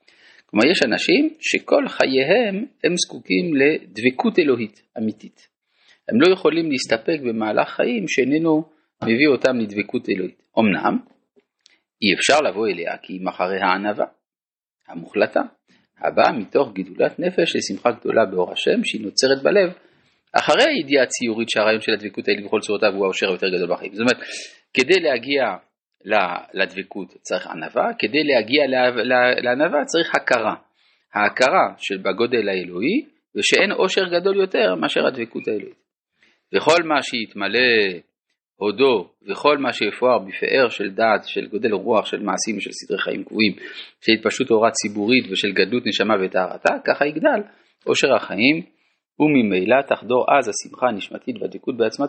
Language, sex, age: Hebrew, male, 40-59